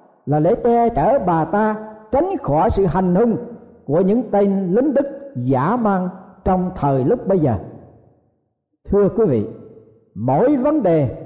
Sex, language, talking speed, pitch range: male, Vietnamese, 155 wpm, 165-235 Hz